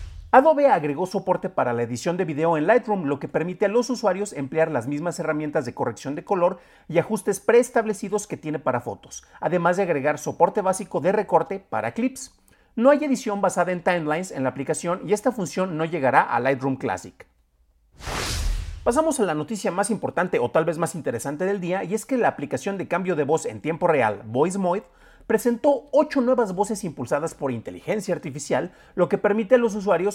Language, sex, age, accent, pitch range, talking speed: Spanish, male, 40-59, Mexican, 145-205 Hz, 195 wpm